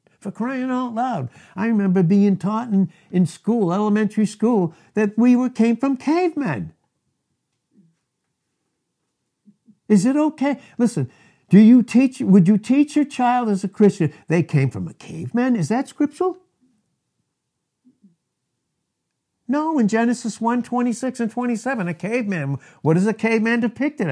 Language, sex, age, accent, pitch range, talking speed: English, male, 60-79, American, 170-245 Hz, 135 wpm